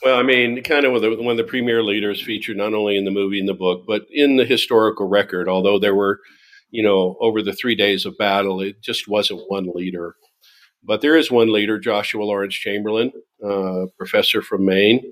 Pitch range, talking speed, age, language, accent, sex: 95-115 Hz, 220 wpm, 50-69, English, American, male